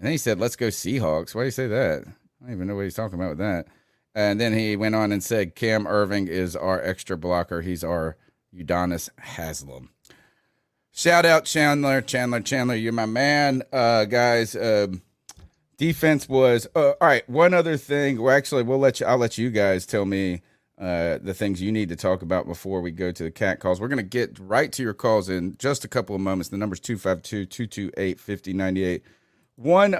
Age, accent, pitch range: 30-49, American, 95-130 Hz